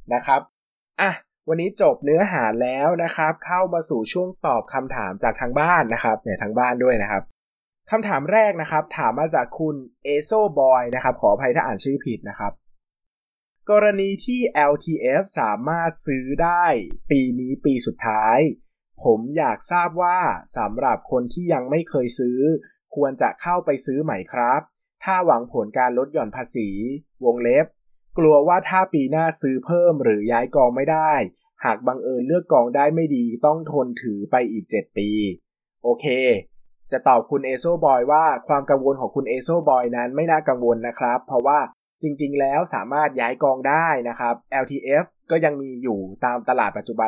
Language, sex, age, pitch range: Thai, male, 20-39, 125-165 Hz